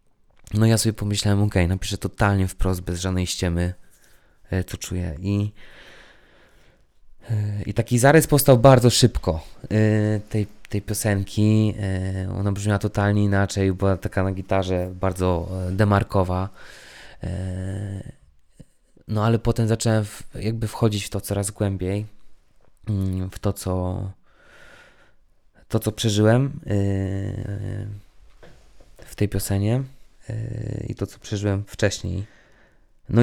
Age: 20-39